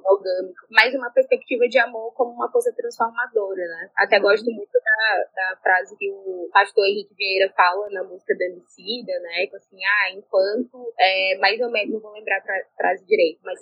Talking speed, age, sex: 190 wpm, 10-29, female